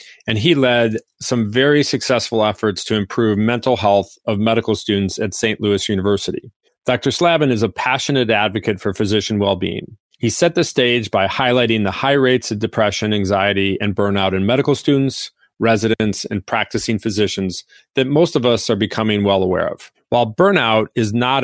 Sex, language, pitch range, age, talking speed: male, English, 100-125 Hz, 40-59, 170 wpm